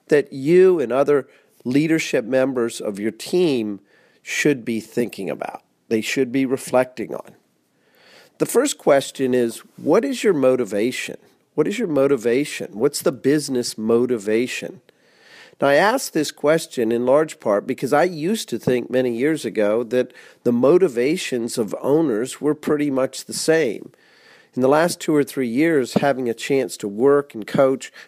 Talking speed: 160 wpm